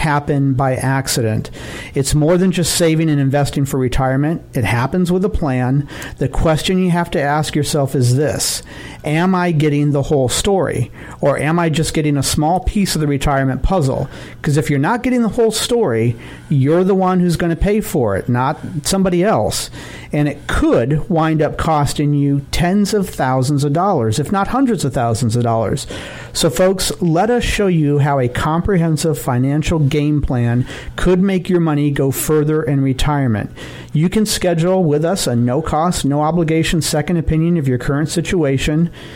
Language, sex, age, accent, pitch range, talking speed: English, male, 50-69, American, 135-170 Hz, 180 wpm